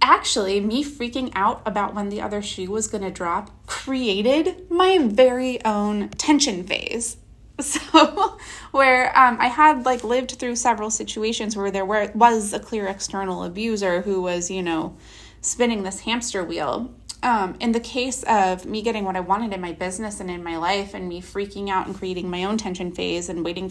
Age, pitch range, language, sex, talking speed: 20-39, 190-250 Hz, English, female, 185 wpm